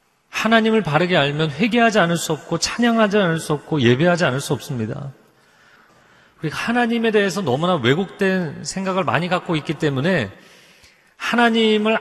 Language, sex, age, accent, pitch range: Korean, male, 30-49, native, 115-180 Hz